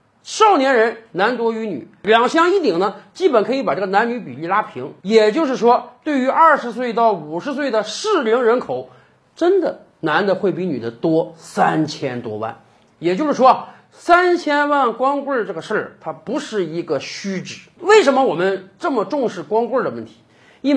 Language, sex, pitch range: Chinese, male, 185-285 Hz